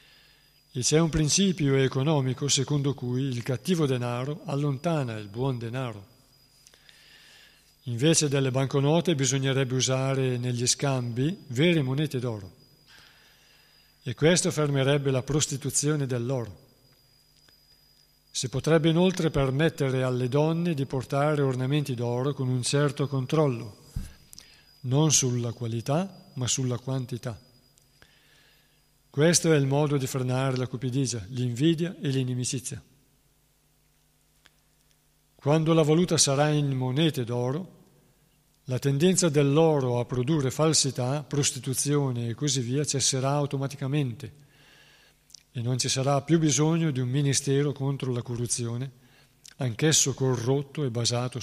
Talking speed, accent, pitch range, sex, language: 110 wpm, native, 125-150 Hz, male, Italian